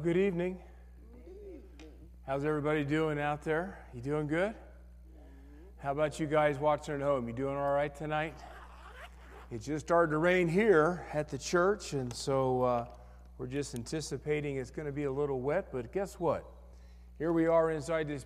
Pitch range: 125-165 Hz